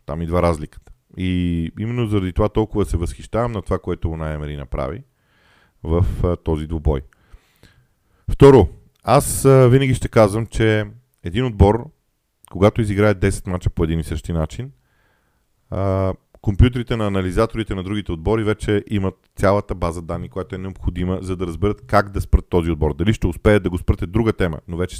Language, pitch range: Bulgarian, 85-105 Hz